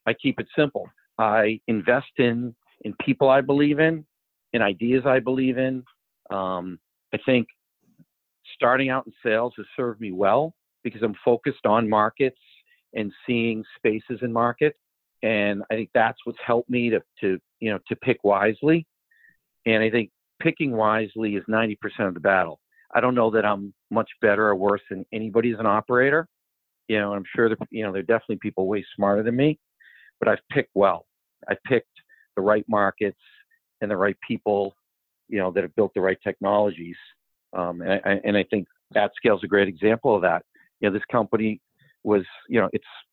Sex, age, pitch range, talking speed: male, 50-69, 105-125 Hz, 185 wpm